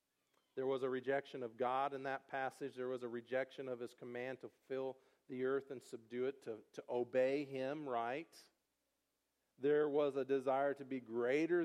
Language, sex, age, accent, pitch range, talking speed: English, male, 50-69, American, 135-170 Hz, 180 wpm